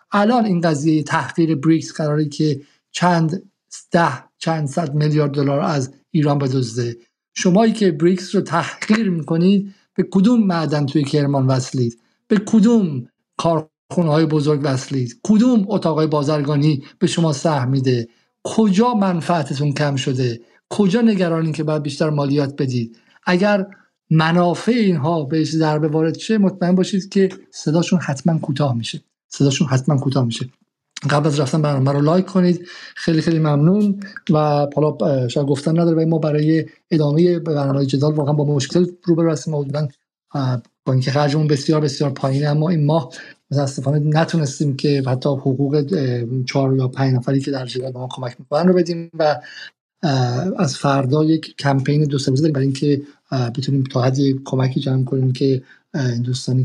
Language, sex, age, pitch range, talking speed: Persian, male, 50-69, 135-170 Hz, 155 wpm